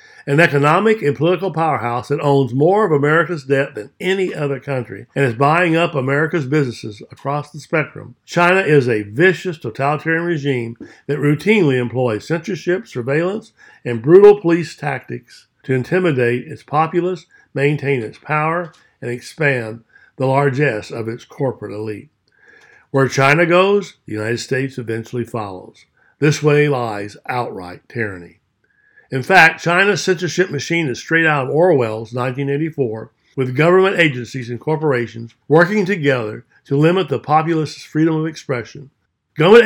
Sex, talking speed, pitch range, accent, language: male, 140 wpm, 125-170 Hz, American, English